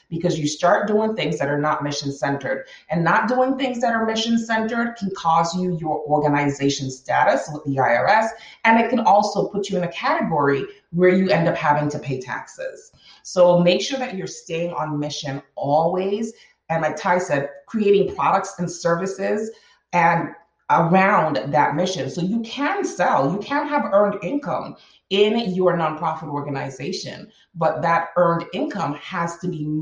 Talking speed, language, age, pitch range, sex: 165 wpm, English, 30-49, 150-200 Hz, female